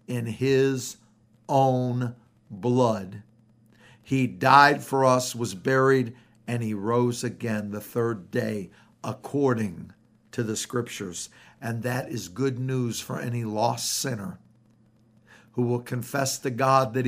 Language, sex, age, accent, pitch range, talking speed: English, male, 60-79, American, 110-135 Hz, 125 wpm